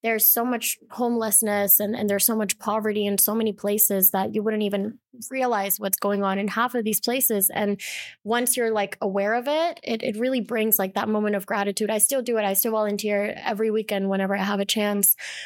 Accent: American